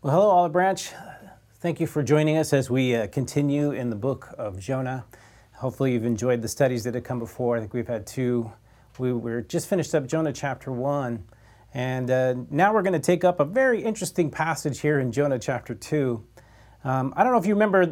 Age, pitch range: 40-59, 125-170 Hz